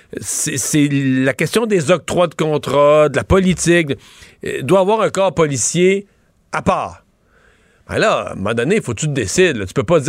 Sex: male